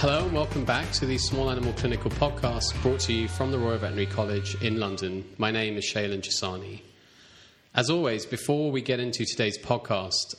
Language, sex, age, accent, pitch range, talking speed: English, male, 30-49, British, 105-130 Hz, 190 wpm